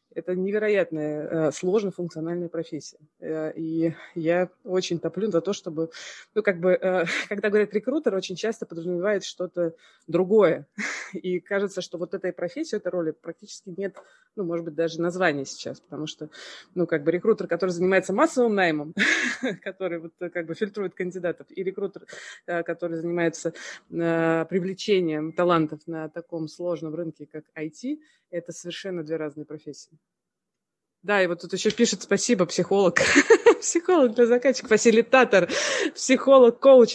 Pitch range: 165-210 Hz